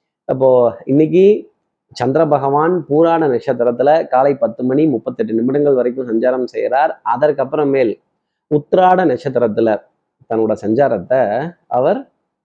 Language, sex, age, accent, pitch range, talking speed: Tamil, male, 30-49, native, 125-170 Hz, 95 wpm